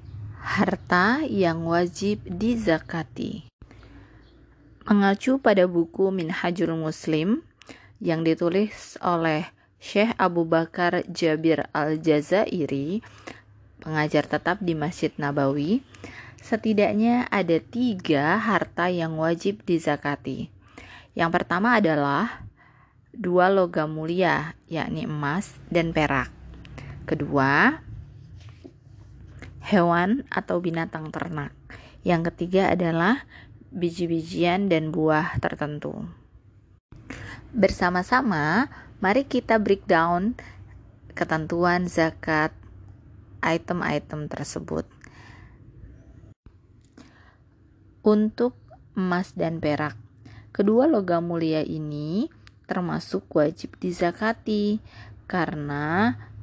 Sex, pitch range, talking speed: female, 135-185 Hz, 75 wpm